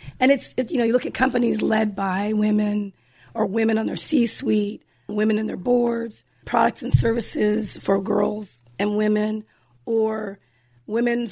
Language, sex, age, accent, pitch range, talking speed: English, female, 40-59, American, 190-245 Hz, 160 wpm